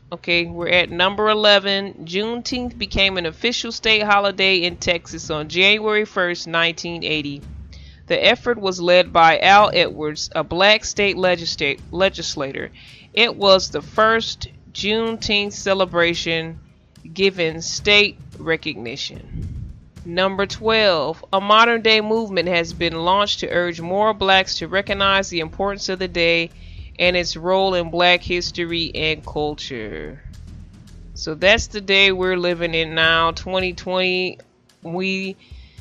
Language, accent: English, American